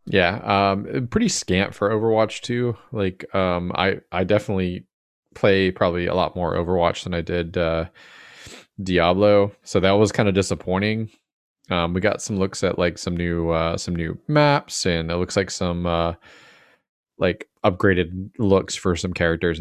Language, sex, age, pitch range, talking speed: English, male, 20-39, 85-100 Hz, 160 wpm